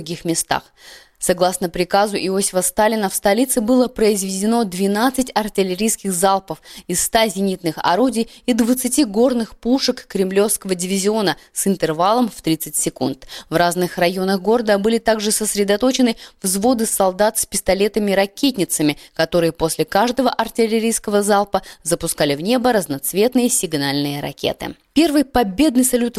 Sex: female